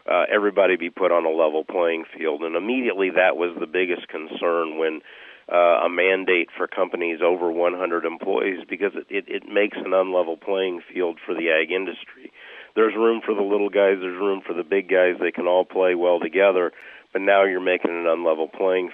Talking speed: 205 wpm